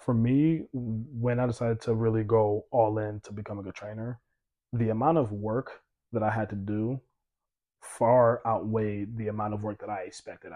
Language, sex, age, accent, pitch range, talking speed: English, male, 20-39, American, 105-120 Hz, 180 wpm